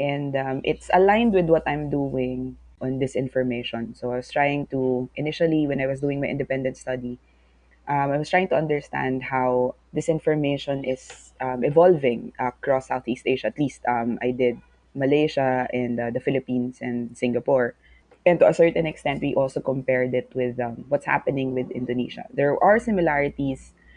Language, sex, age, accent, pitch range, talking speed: English, female, 20-39, Filipino, 125-150 Hz, 170 wpm